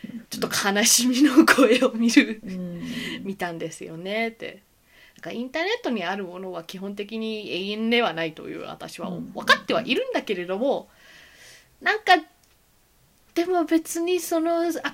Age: 20-39